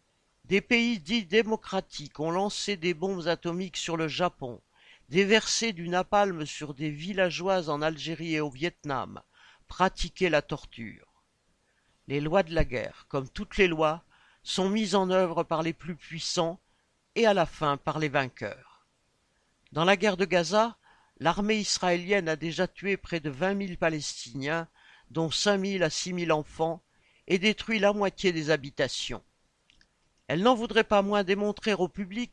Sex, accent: male, French